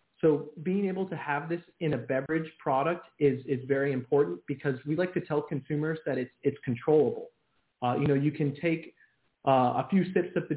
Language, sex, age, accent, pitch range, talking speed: English, male, 20-39, American, 135-165 Hz, 205 wpm